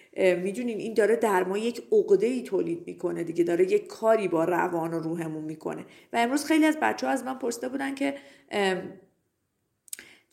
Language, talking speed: Persian, 165 wpm